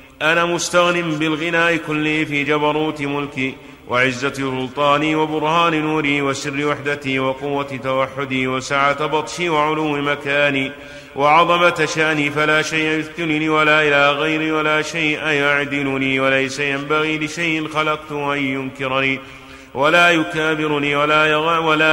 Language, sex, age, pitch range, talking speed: Arabic, male, 30-49, 140-155 Hz, 105 wpm